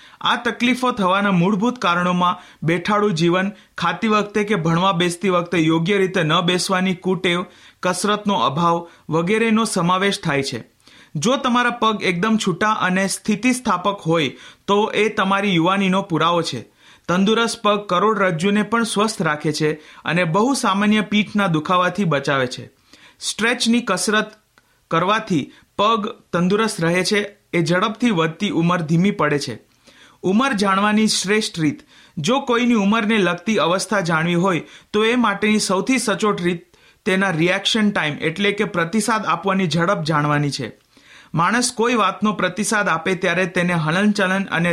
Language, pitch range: Hindi, 170-215 Hz